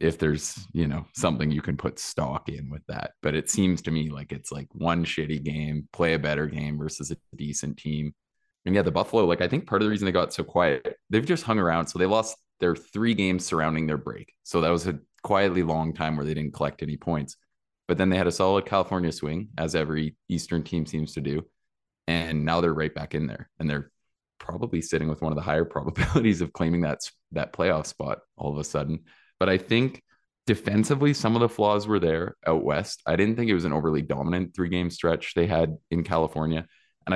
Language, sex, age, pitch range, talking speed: English, male, 20-39, 75-95 Hz, 230 wpm